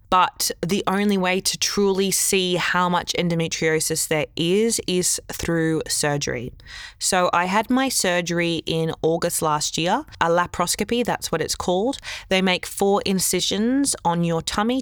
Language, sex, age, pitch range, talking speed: English, female, 20-39, 165-200 Hz, 150 wpm